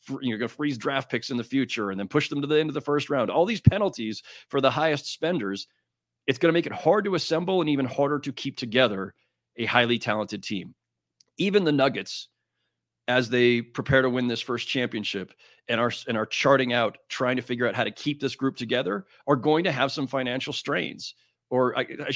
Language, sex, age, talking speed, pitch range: English, male, 30-49, 220 wpm, 110-135 Hz